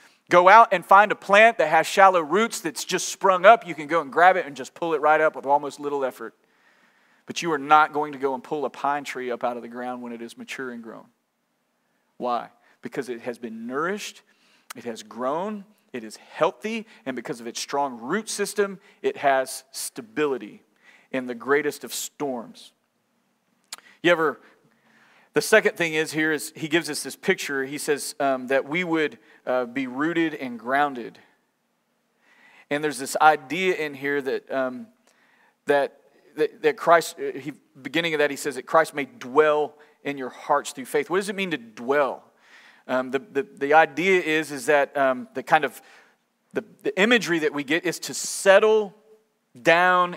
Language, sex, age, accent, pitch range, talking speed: English, male, 40-59, American, 140-195 Hz, 190 wpm